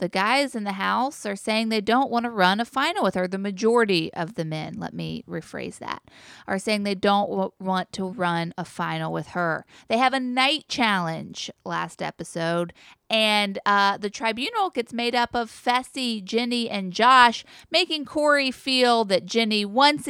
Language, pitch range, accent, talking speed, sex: English, 185-240 Hz, American, 180 wpm, female